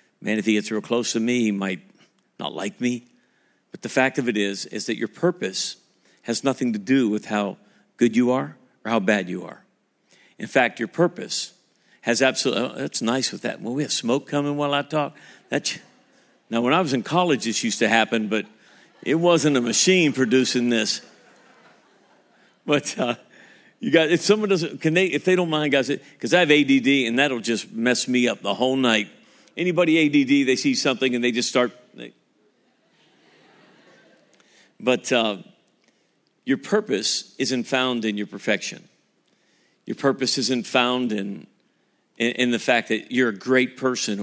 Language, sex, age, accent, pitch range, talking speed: English, male, 50-69, American, 110-140 Hz, 180 wpm